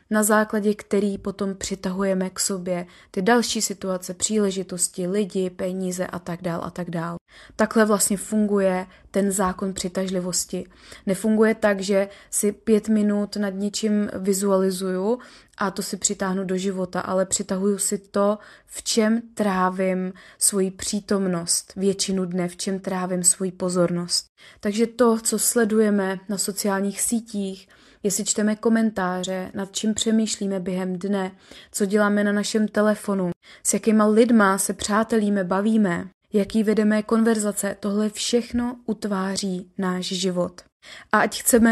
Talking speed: 130 wpm